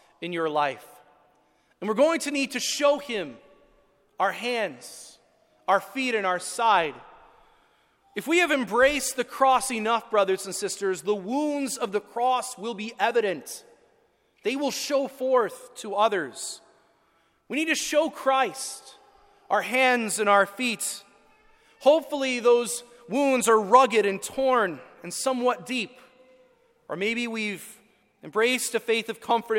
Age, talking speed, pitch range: 30-49, 140 wpm, 195-265 Hz